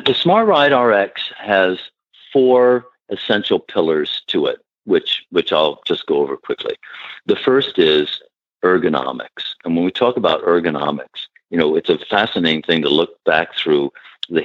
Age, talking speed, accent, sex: 50-69, 160 wpm, American, male